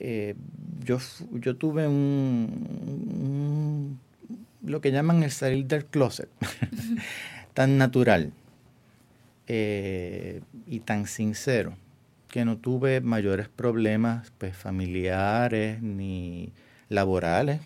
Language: English